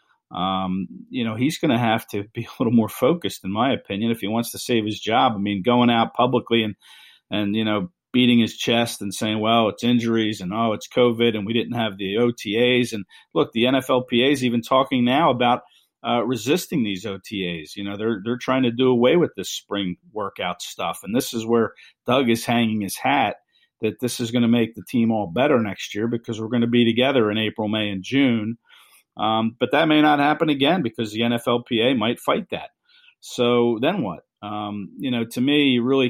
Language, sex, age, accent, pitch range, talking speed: English, male, 50-69, American, 105-125 Hz, 220 wpm